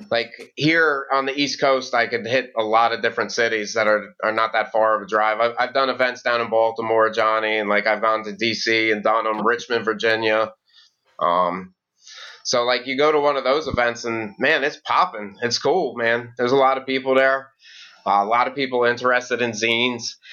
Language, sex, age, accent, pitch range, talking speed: English, male, 30-49, American, 110-135 Hz, 215 wpm